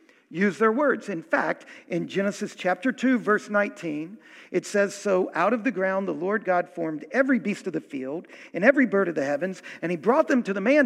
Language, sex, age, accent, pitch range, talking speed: English, male, 50-69, American, 185-275 Hz, 220 wpm